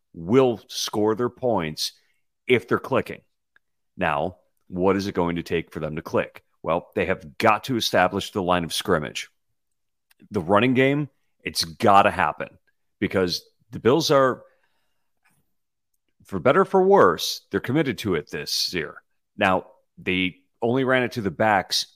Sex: male